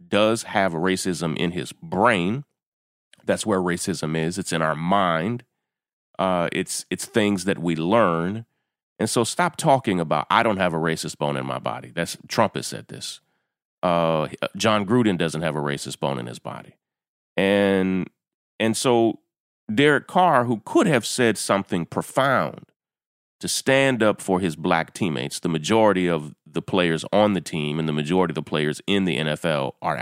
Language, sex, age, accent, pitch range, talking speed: English, male, 30-49, American, 80-100 Hz, 175 wpm